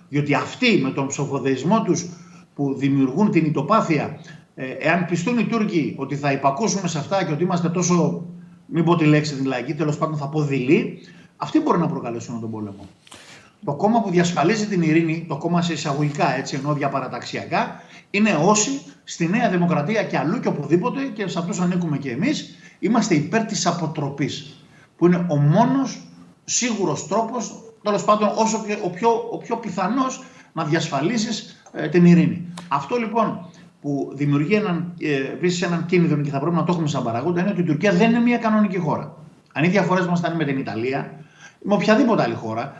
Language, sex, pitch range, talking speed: Greek, male, 145-195 Hz, 170 wpm